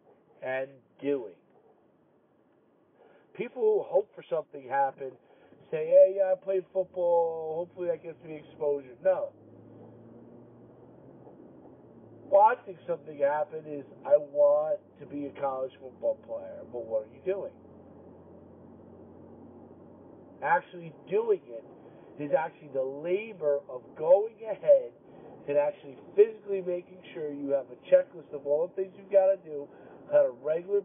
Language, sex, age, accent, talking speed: English, male, 50-69, American, 130 wpm